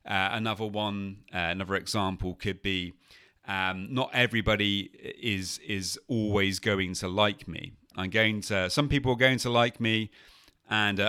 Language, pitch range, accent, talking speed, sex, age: English, 95-125 Hz, British, 155 wpm, male, 40-59